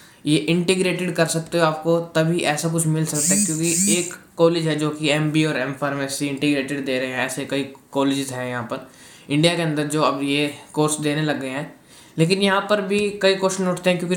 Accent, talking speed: native, 220 wpm